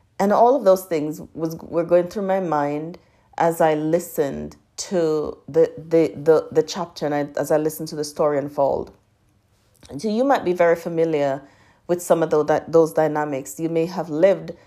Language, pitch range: English, 155-180 Hz